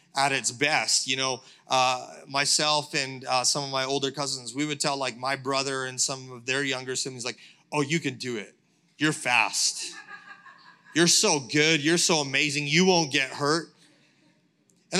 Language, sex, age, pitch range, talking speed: English, male, 30-49, 140-170 Hz, 180 wpm